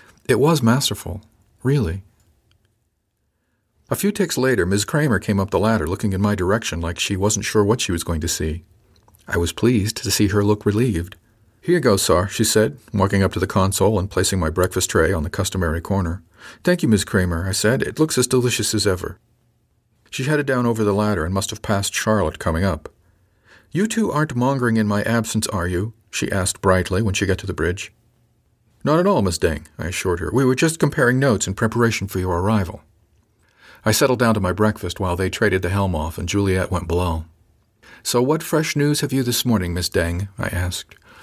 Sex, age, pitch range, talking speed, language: male, 50-69, 95-120 Hz, 210 wpm, English